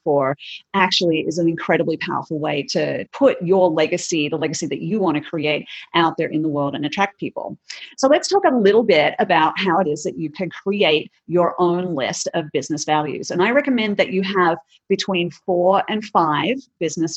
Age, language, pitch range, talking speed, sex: 40-59, English, 165-205 Hz, 200 wpm, female